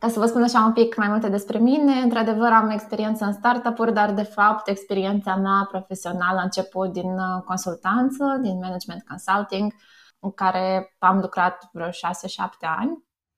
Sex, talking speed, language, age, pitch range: female, 165 wpm, Romanian, 20-39, 185-230 Hz